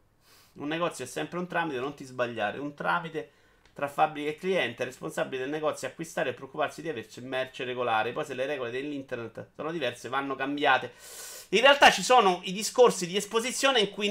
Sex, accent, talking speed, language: male, native, 190 wpm, Italian